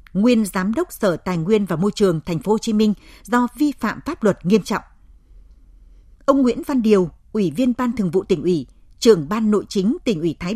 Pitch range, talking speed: 185-245 Hz, 200 wpm